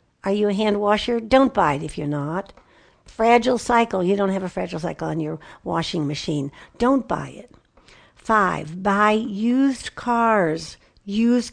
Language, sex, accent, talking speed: English, female, American, 160 wpm